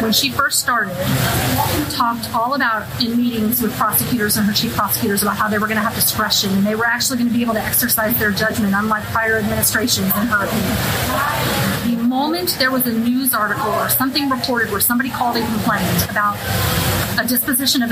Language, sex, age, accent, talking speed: English, female, 30-49, American, 200 wpm